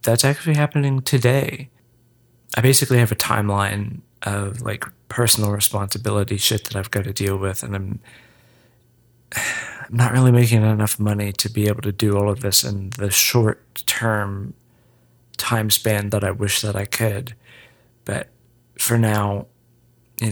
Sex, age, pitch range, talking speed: male, 30-49, 100-120 Hz, 155 wpm